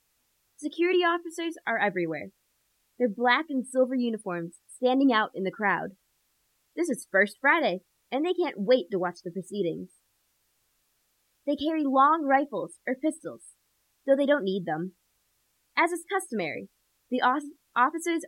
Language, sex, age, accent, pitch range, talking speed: English, female, 20-39, American, 205-290 Hz, 140 wpm